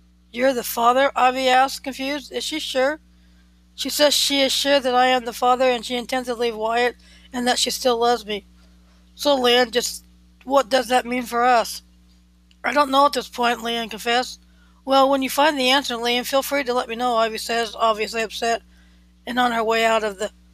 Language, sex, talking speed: English, female, 210 wpm